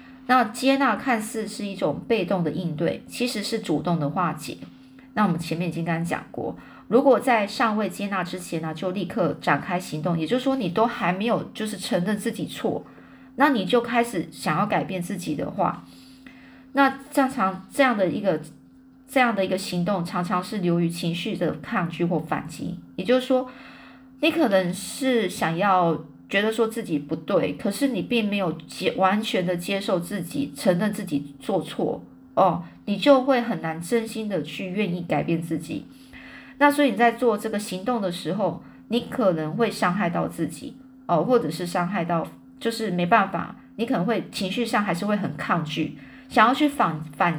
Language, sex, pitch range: Chinese, female, 175-245 Hz